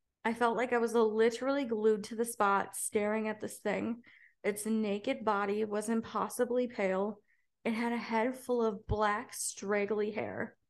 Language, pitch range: English, 210-235 Hz